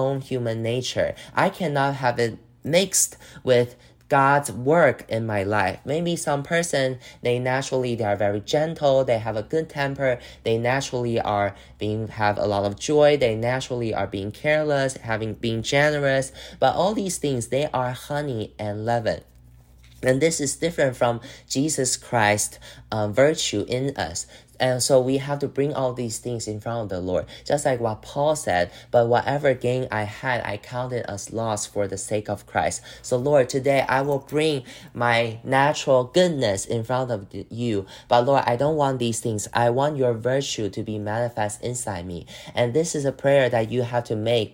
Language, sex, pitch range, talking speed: English, male, 110-135 Hz, 185 wpm